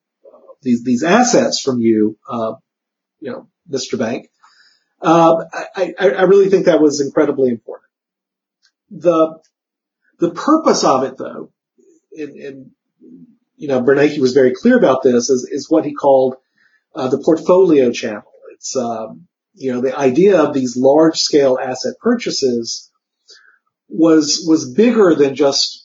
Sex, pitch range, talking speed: female, 135-210 Hz, 140 wpm